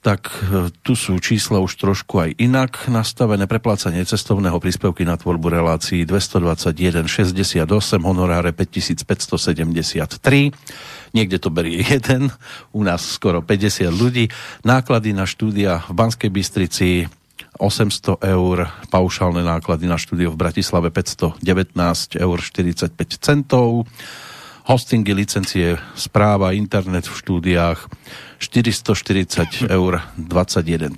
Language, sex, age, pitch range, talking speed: Slovak, male, 50-69, 85-110 Hz, 105 wpm